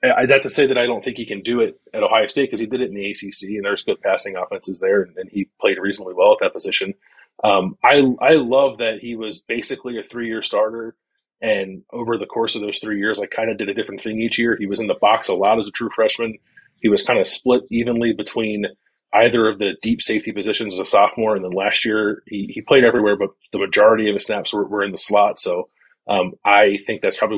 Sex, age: male, 30-49